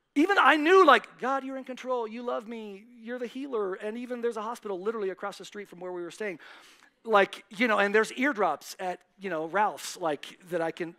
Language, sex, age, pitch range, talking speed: English, male, 40-59, 170-235 Hz, 230 wpm